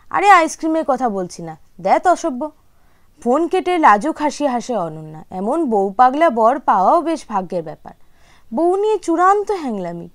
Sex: female